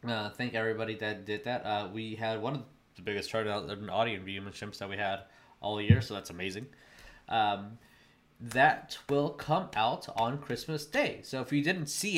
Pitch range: 115-150 Hz